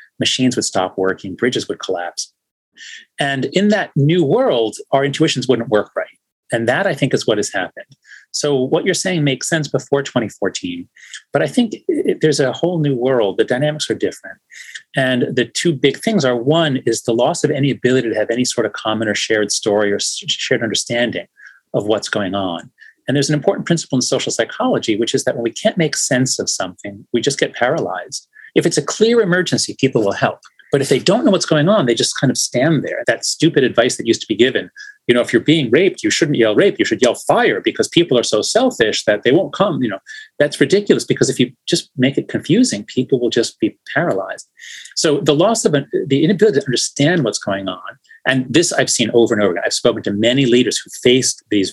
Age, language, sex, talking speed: 30-49, English, male, 225 wpm